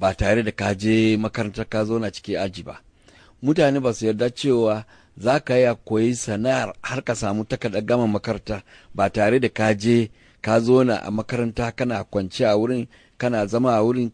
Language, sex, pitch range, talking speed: English, male, 105-130 Hz, 115 wpm